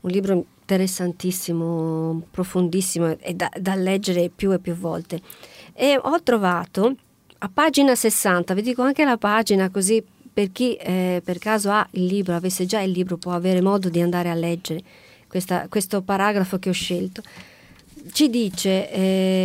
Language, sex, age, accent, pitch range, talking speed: Italian, female, 40-59, native, 180-240 Hz, 155 wpm